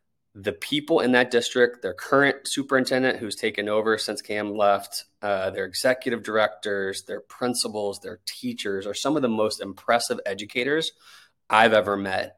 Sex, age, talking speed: male, 20-39, 155 wpm